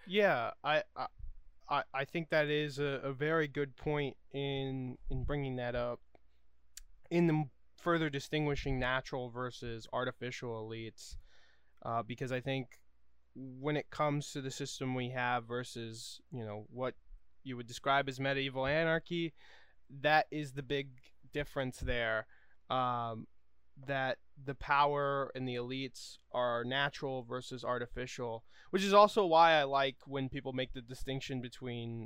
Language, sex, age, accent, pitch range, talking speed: English, male, 20-39, American, 120-145 Hz, 140 wpm